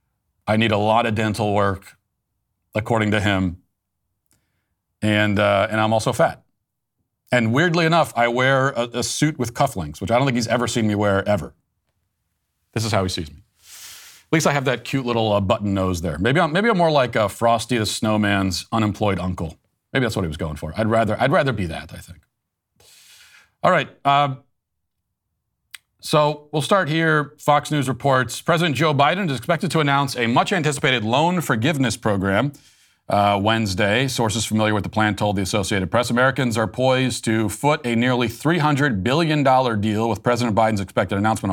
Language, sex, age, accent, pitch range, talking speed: English, male, 40-59, American, 100-130 Hz, 185 wpm